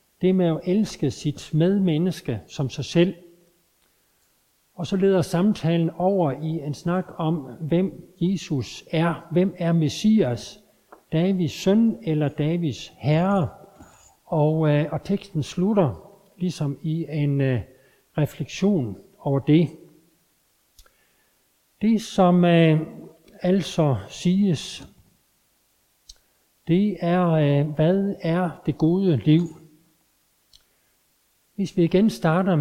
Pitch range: 150-185 Hz